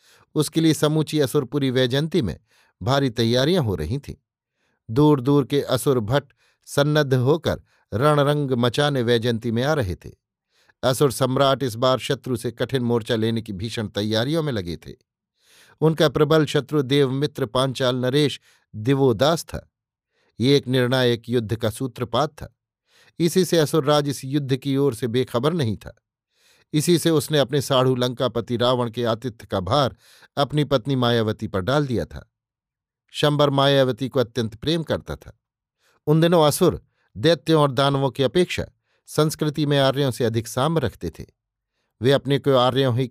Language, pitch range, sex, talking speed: Hindi, 120-145 Hz, male, 120 wpm